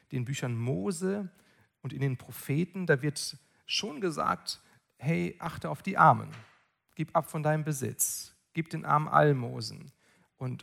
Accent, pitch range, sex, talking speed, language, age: German, 135-180 Hz, male, 145 wpm, German, 40-59